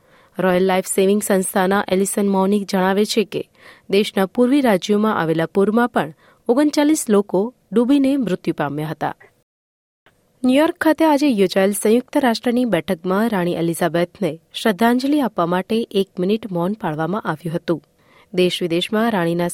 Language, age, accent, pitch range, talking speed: Gujarati, 30-49, native, 175-230 Hz, 125 wpm